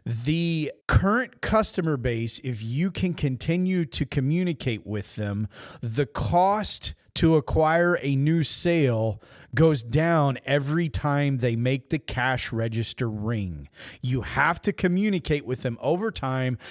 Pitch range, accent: 120-175 Hz, American